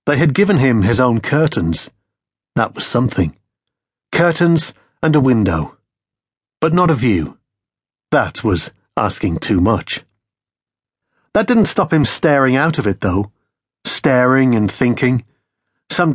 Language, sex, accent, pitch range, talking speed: English, male, British, 105-145 Hz, 135 wpm